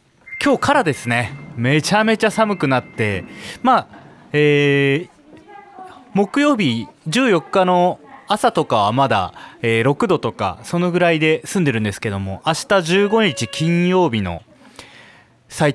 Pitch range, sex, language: 120-195 Hz, male, Japanese